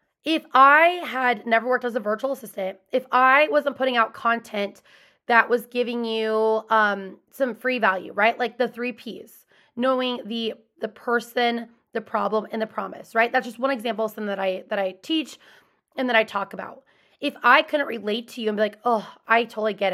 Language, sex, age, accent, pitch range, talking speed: English, female, 20-39, American, 210-260 Hz, 200 wpm